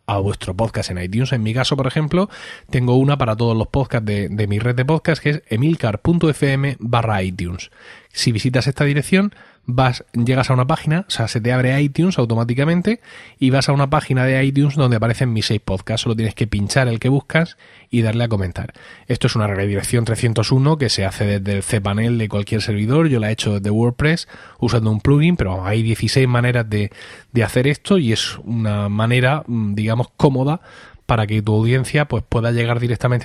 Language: Spanish